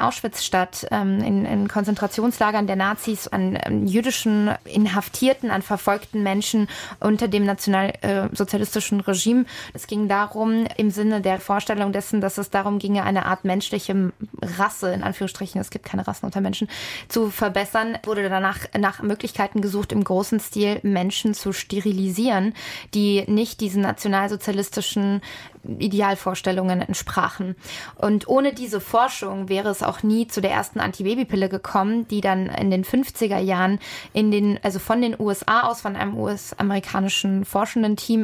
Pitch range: 195-215 Hz